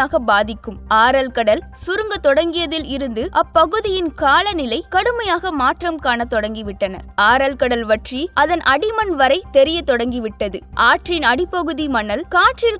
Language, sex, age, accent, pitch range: Tamil, female, 20-39, native, 250-335 Hz